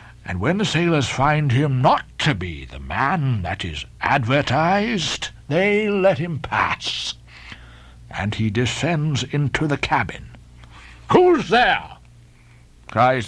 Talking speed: 120 wpm